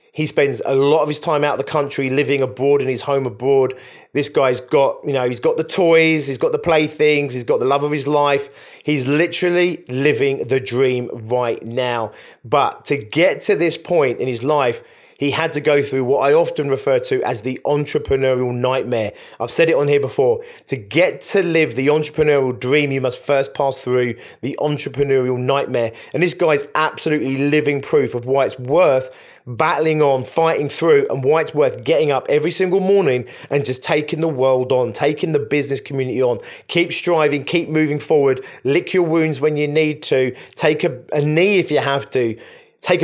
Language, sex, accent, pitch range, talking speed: English, male, British, 130-165 Hz, 200 wpm